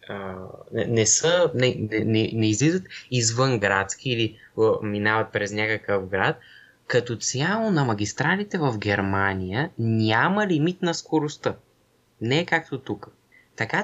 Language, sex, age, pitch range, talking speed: Bulgarian, male, 20-39, 105-150 Hz, 130 wpm